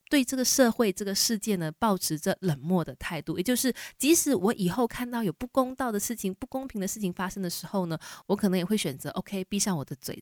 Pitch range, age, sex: 170-220 Hz, 20-39, female